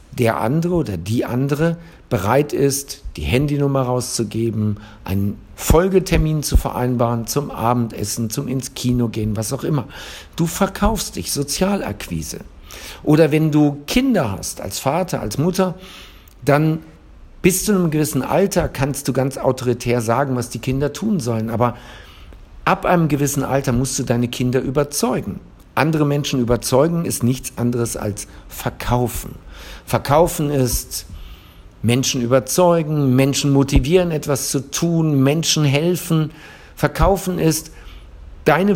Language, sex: German, male